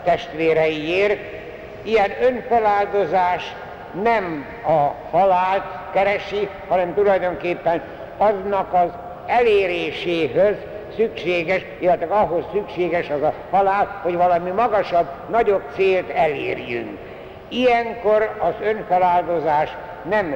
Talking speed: 85 wpm